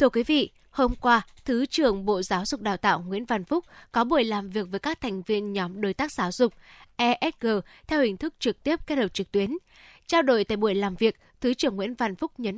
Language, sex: Vietnamese, female